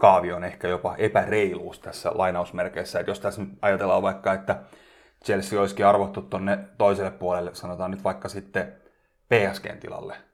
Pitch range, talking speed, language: 90-100 Hz, 145 wpm, Finnish